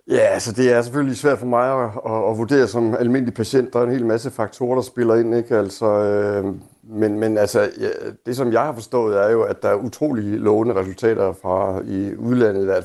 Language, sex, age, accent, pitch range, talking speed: Danish, male, 60-79, native, 100-120 Hz, 235 wpm